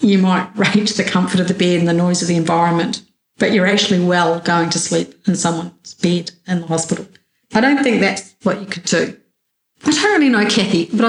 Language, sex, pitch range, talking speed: English, female, 180-220 Hz, 220 wpm